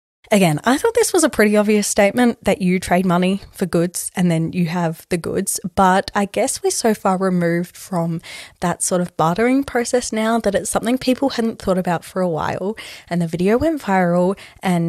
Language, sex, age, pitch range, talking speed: English, female, 20-39, 180-250 Hz, 205 wpm